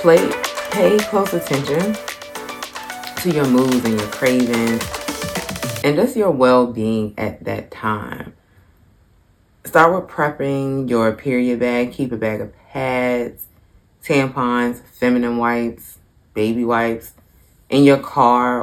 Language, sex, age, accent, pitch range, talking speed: English, female, 20-39, American, 100-130 Hz, 115 wpm